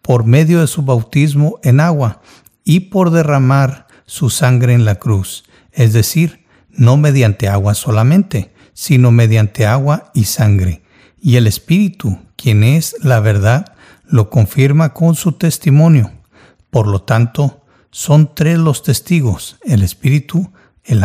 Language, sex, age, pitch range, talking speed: Spanish, male, 50-69, 110-150 Hz, 135 wpm